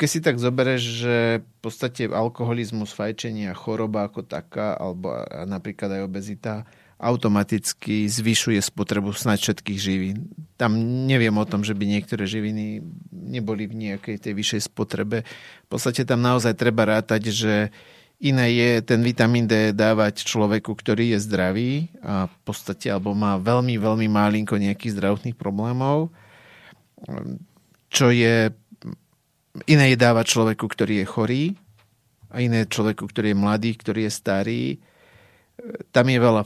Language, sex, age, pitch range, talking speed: Slovak, male, 30-49, 105-120 Hz, 140 wpm